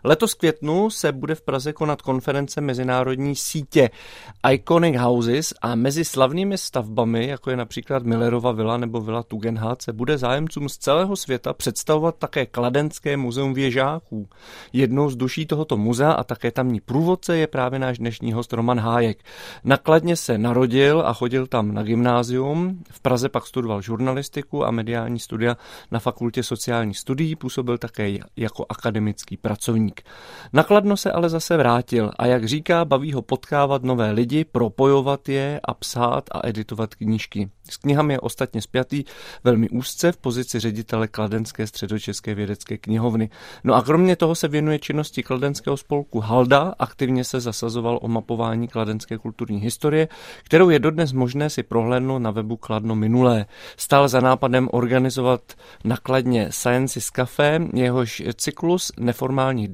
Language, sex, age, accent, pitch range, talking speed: Czech, male, 30-49, native, 115-145 Hz, 150 wpm